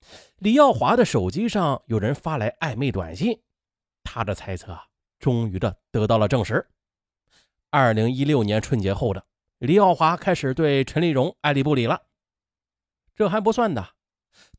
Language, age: Chinese, 30-49